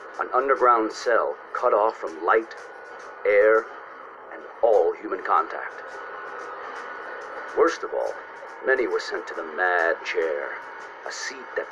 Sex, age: male, 50-69